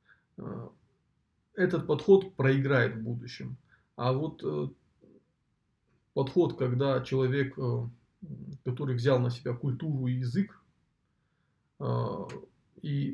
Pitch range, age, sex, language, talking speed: 120-140 Hz, 20-39, male, Russian, 80 wpm